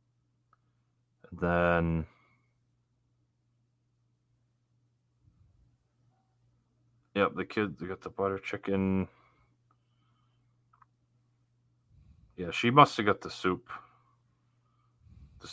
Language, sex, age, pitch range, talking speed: English, male, 30-49, 95-120 Hz, 60 wpm